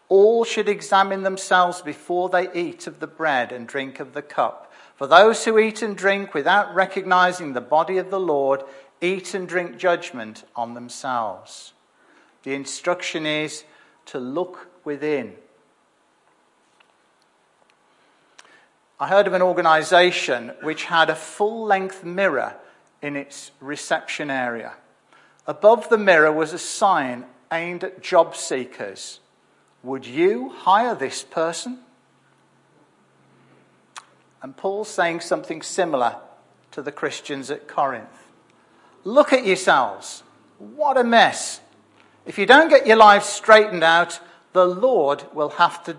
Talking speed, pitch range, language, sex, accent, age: 130 wpm, 150-195 Hz, English, male, British, 50-69